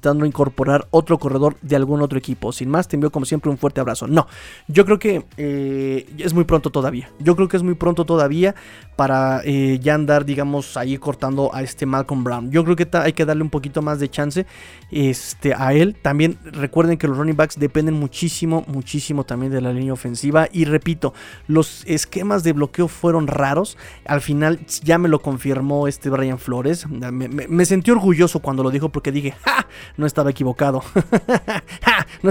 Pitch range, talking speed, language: 140-165 Hz, 195 wpm, Spanish